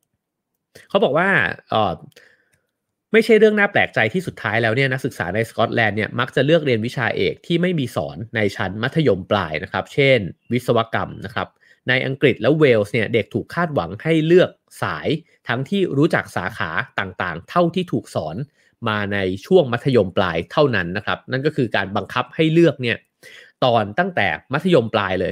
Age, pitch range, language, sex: 30-49, 105-150 Hz, English, male